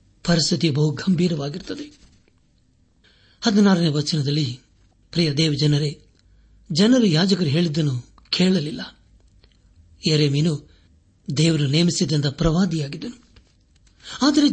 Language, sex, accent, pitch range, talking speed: Kannada, male, native, 125-175 Hz, 75 wpm